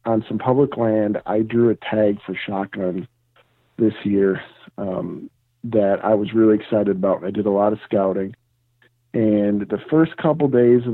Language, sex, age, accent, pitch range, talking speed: English, male, 50-69, American, 105-120 Hz, 170 wpm